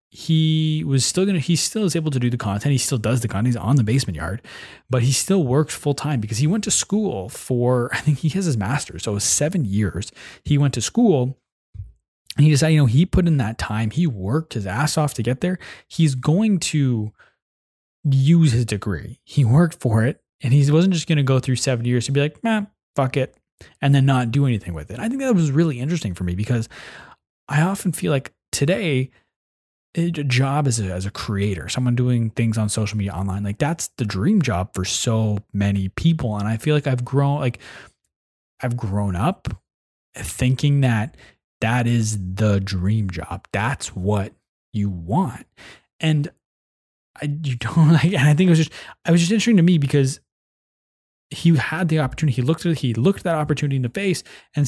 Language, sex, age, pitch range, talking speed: English, male, 20-39, 110-155 Hz, 210 wpm